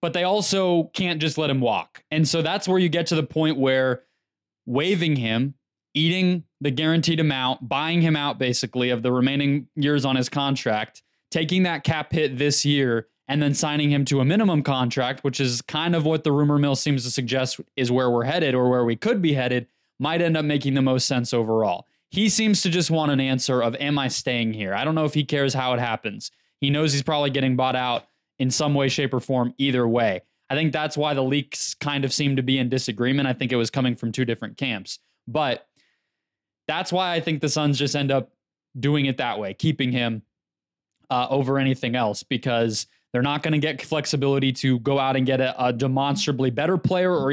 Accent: American